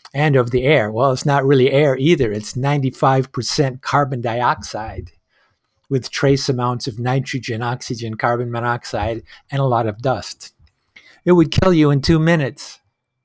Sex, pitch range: male, 120-145 Hz